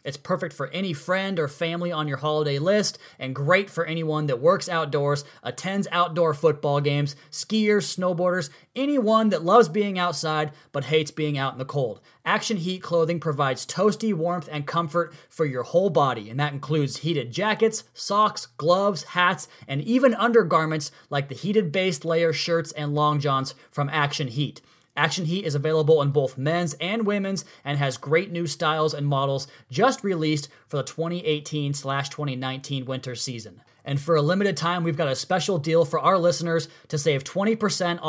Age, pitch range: 30-49, 145-185 Hz